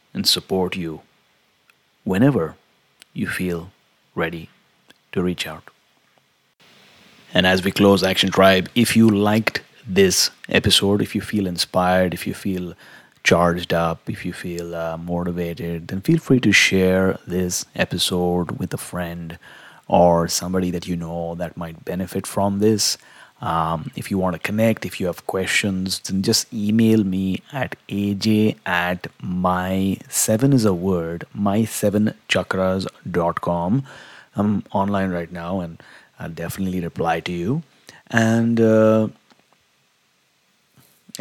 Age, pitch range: 30-49, 90-105 Hz